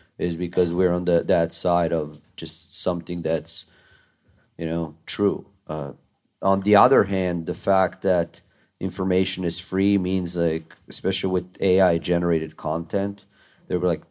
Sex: male